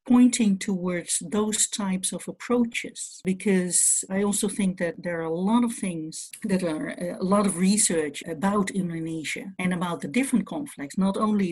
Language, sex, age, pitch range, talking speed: English, female, 60-79, 165-225 Hz, 165 wpm